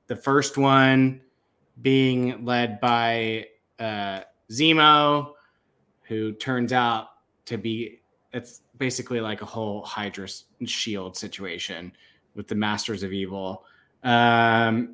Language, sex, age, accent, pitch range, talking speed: English, male, 20-39, American, 115-140 Hz, 110 wpm